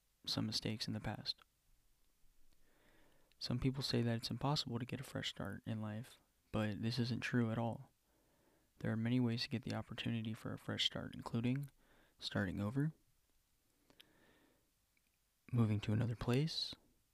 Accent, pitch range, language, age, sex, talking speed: American, 110-125 Hz, English, 20-39, male, 150 wpm